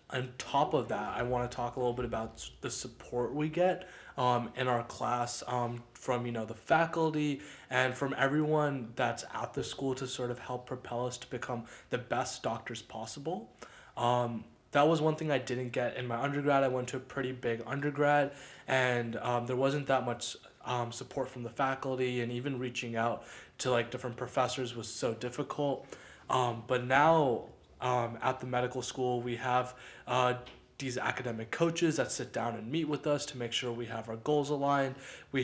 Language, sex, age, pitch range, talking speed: English, male, 20-39, 120-135 Hz, 195 wpm